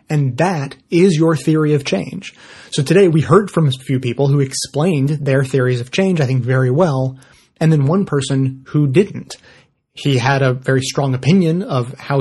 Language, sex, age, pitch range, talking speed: English, male, 30-49, 125-150 Hz, 190 wpm